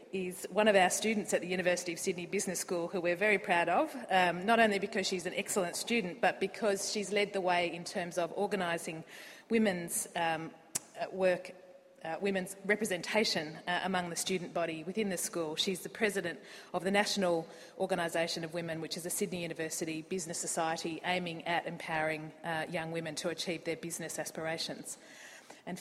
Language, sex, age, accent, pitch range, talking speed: English, female, 30-49, Australian, 170-205 Hz, 180 wpm